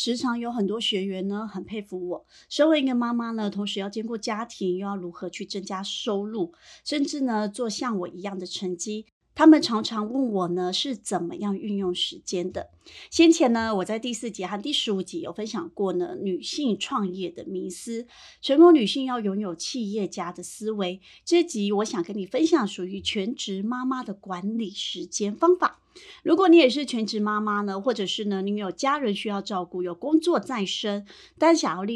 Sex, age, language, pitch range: female, 30-49, Chinese, 195-260 Hz